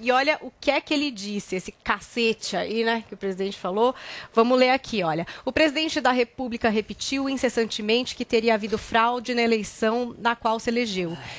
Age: 30-49